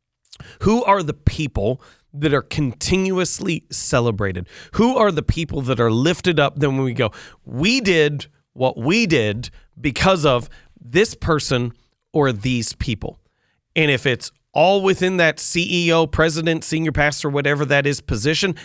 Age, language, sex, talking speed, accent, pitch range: 40-59, English, male, 150 wpm, American, 120-165 Hz